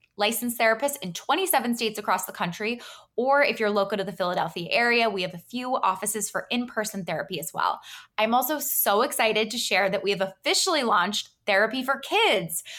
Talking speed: 190 wpm